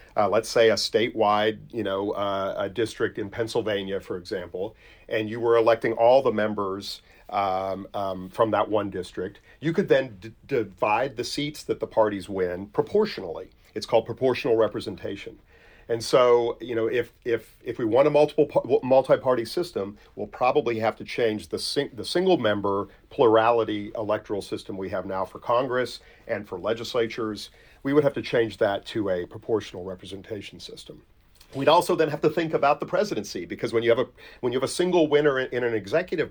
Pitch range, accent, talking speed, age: 100-145 Hz, American, 180 wpm, 40-59